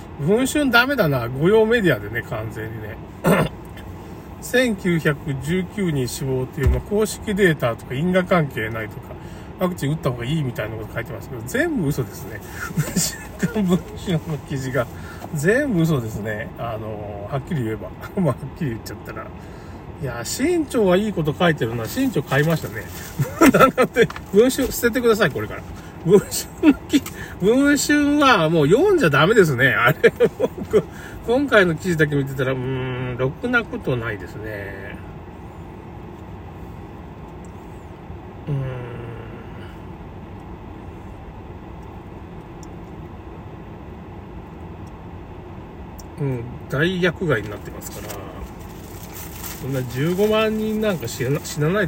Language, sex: Japanese, male